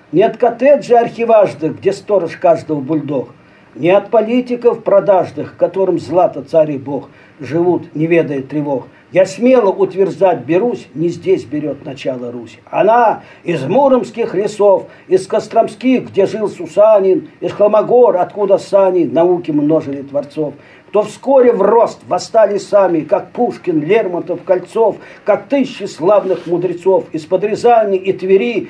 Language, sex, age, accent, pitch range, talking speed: Russian, male, 50-69, native, 160-220 Hz, 135 wpm